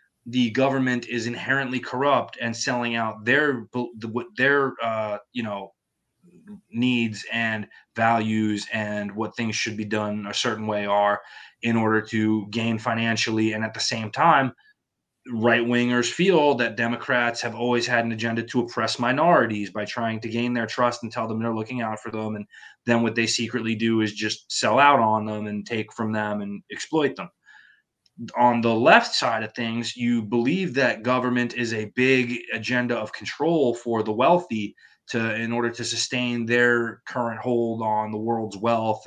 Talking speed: 170 wpm